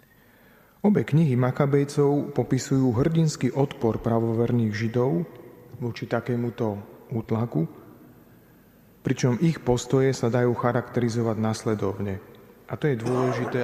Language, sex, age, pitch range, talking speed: Slovak, male, 30-49, 110-130 Hz, 95 wpm